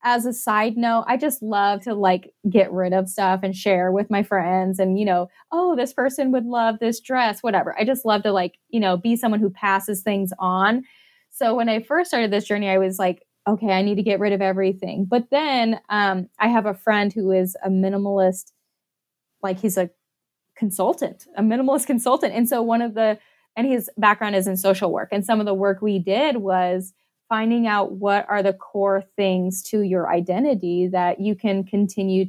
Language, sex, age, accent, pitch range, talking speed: English, female, 20-39, American, 185-220 Hz, 210 wpm